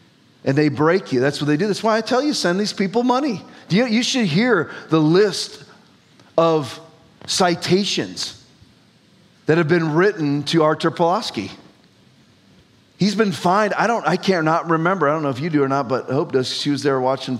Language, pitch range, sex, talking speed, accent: English, 160-210 Hz, male, 190 wpm, American